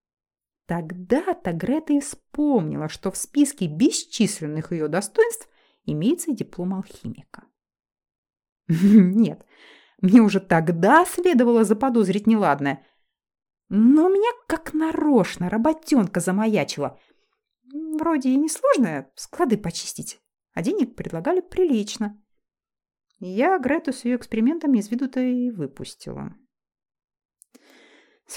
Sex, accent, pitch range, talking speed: female, native, 195-295 Hz, 95 wpm